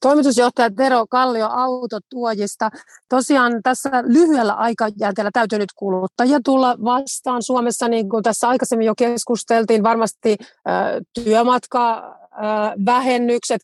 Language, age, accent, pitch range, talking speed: Finnish, 30-49, native, 205-245 Hz, 95 wpm